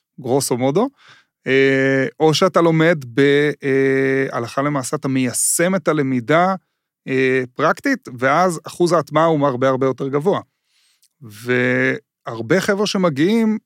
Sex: male